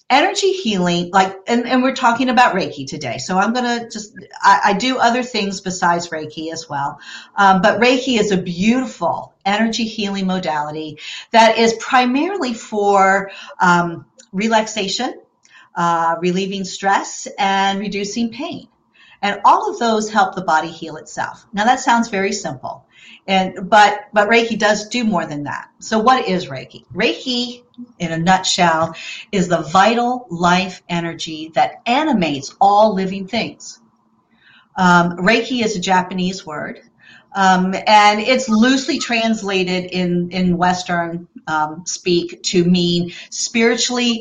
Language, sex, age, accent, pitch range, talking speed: English, female, 50-69, American, 175-225 Hz, 145 wpm